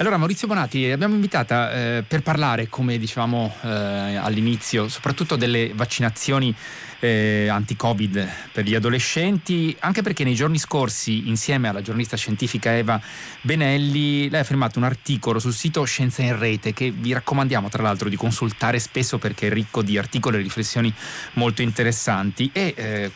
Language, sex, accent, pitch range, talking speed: Italian, male, native, 110-135 Hz, 155 wpm